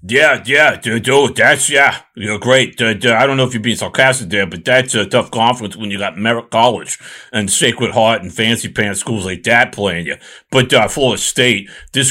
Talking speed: 215 wpm